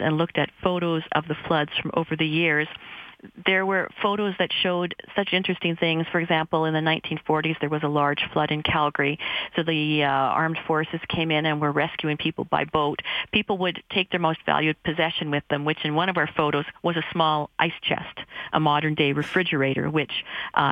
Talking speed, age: 200 wpm, 40-59